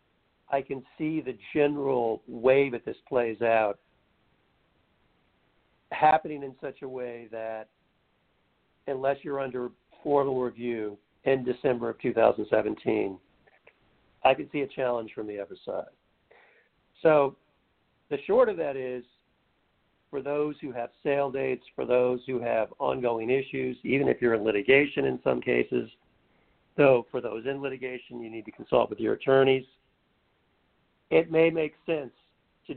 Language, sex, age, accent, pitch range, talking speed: English, male, 60-79, American, 120-140 Hz, 140 wpm